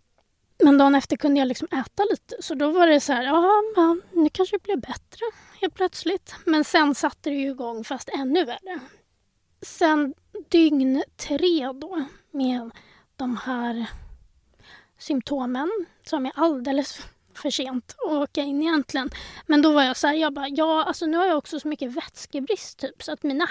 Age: 20-39